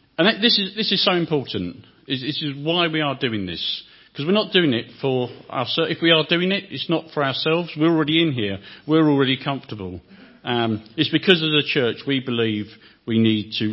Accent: British